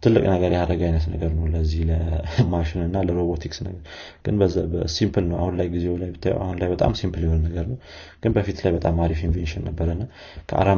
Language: Amharic